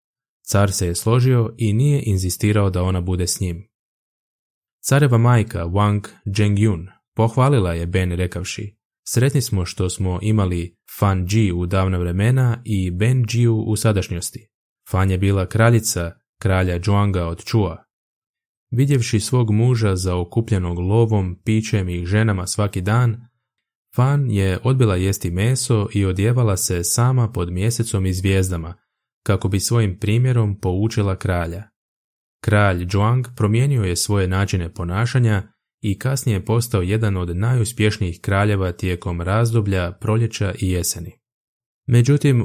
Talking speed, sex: 135 wpm, male